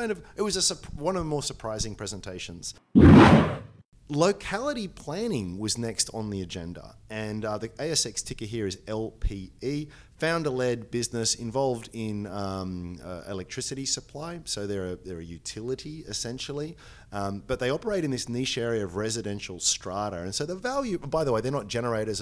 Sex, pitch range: male, 100-120 Hz